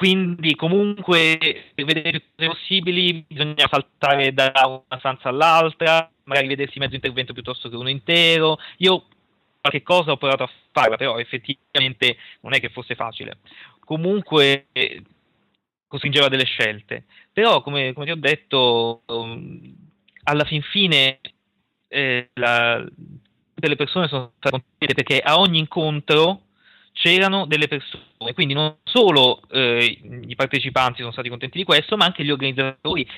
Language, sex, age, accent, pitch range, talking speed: Italian, male, 30-49, native, 125-160 Hz, 140 wpm